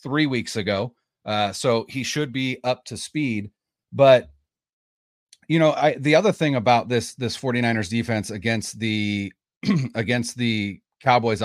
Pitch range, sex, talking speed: 110-140 Hz, male, 145 wpm